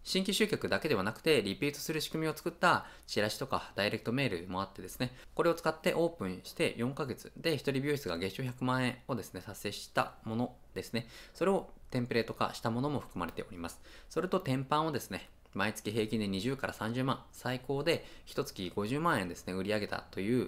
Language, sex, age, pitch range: Japanese, male, 20-39, 95-140 Hz